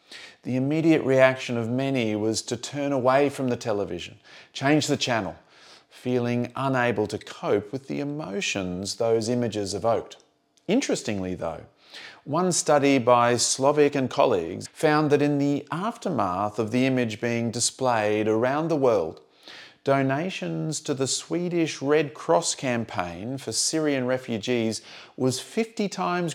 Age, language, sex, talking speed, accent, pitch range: 30-49, English, male, 135 wpm, Australian, 115-150 Hz